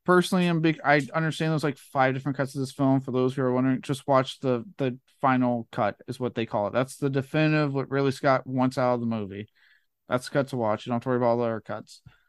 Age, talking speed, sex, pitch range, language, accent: 20-39, 270 wpm, male, 125-145 Hz, English, American